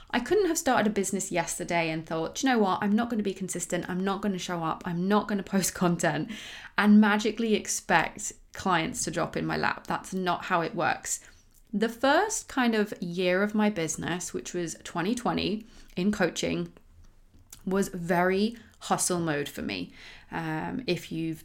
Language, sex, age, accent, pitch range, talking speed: English, female, 20-39, British, 170-220 Hz, 175 wpm